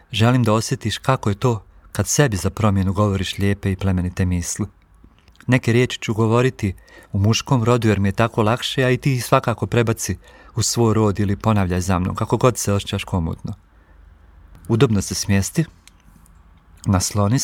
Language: Croatian